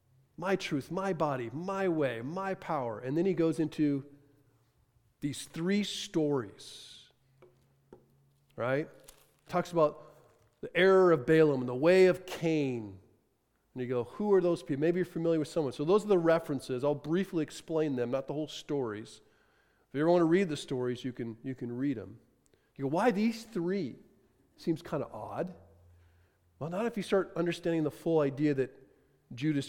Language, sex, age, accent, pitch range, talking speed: English, male, 40-59, American, 130-165 Hz, 180 wpm